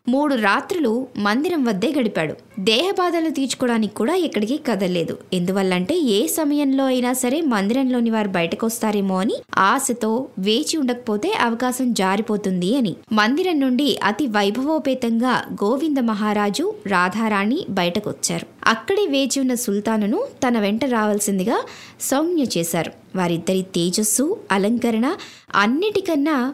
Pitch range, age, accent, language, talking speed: 205-270 Hz, 20-39, native, Telugu, 105 wpm